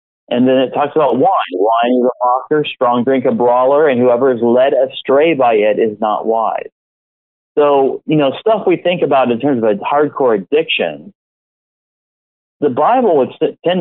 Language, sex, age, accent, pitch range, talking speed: English, male, 40-59, American, 120-155 Hz, 180 wpm